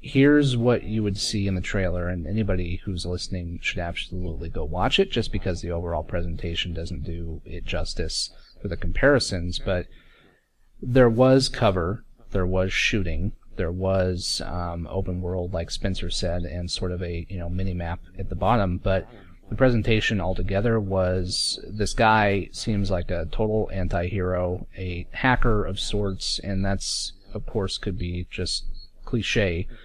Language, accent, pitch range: English, American, 90-105 Hz